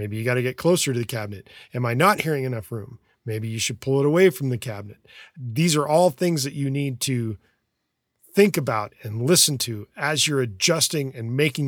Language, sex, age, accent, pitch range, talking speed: English, male, 40-59, American, 120-155 Hz, 215 wpm